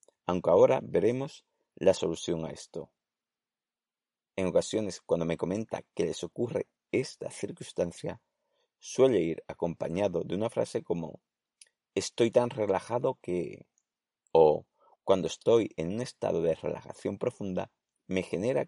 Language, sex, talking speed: Spanish, male, 125 wpm